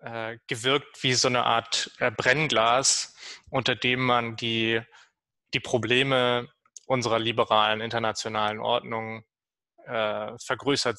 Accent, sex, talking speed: German, male, 110 wpm